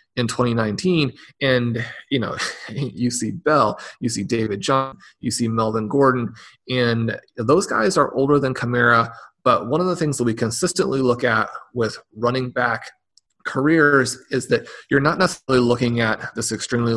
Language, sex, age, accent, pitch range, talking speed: English, male, 30-49, American, 120-145 Hz, 165 wpm